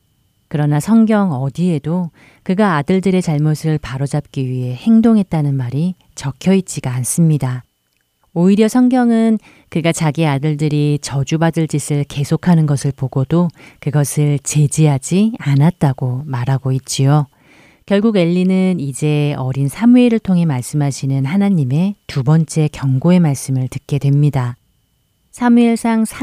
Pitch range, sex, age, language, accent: 135-170 Hz, female, 40-59, Korean, native